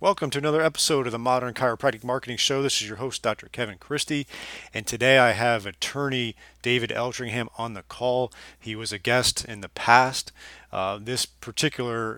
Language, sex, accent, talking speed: English, male, American, 180 wpm